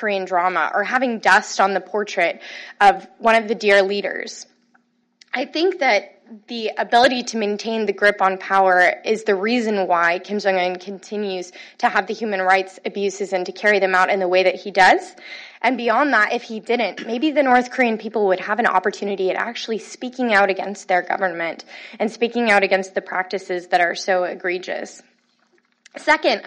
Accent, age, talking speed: American, 20-39, 185 wpm